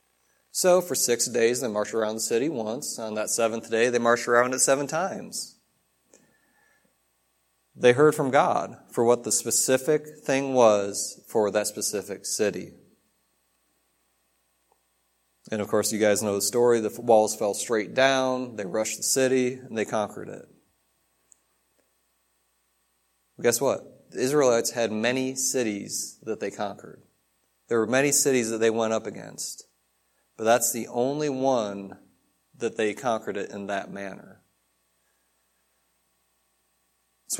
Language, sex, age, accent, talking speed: English, male, 30-49, American, 140 wpm